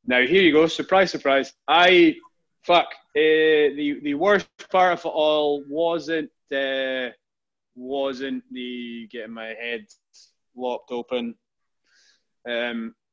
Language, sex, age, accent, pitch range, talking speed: English, male, 20-39, British, 120-155 Hz, 120 wpm